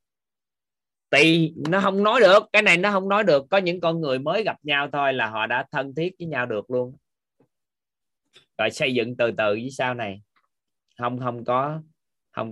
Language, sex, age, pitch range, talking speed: Vietnamese, male, 30-49, 110-150 Hz, 190 wpm